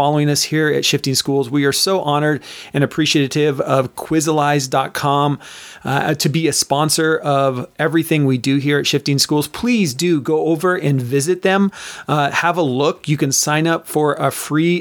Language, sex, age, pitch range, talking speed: English, male, 30-49, 140-165 Hz, 180 wpm